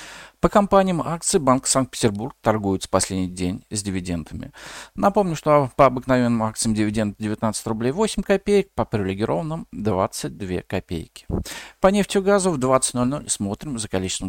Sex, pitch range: male, 95-160 Hz